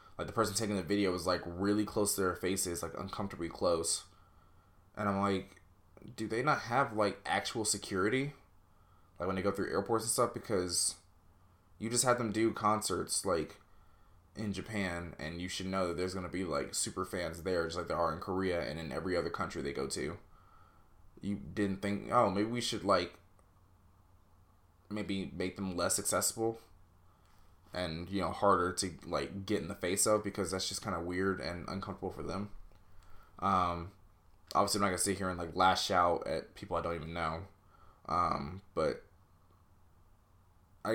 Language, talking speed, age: English, 185 wpm, 20-39